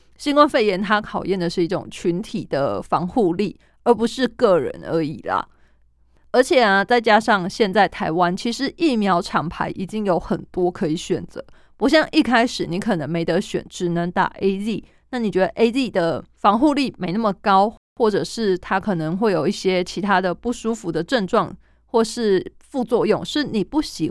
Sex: female